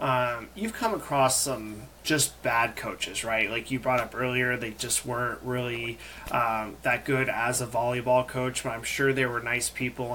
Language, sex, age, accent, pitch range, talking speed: English, male, 30-49, American, 120-145 Hz, 190 wpm